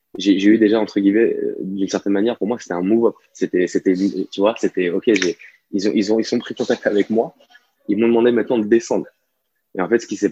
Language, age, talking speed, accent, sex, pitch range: French, 20-39, 255 wpm, French, male, 95-110 Hz